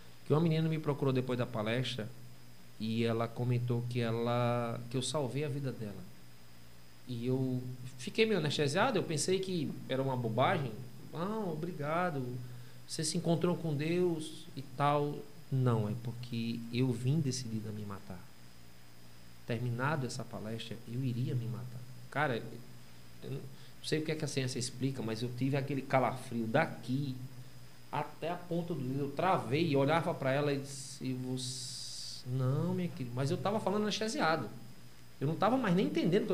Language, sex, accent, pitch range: Portuguese, male, Brazilian, 115-145 Hz